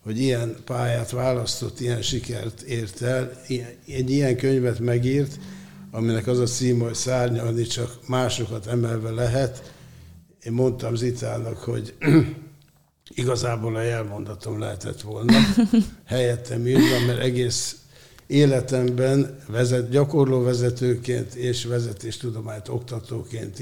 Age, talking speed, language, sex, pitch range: 60-79, 110 wpm, Hungarian, male, 115-130 Hz